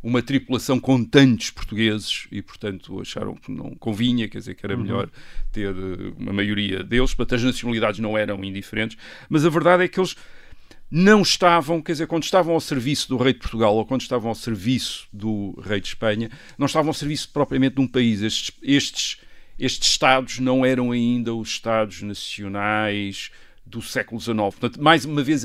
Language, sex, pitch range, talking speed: Portuguese, male, 115-150 Hz, 185 wpm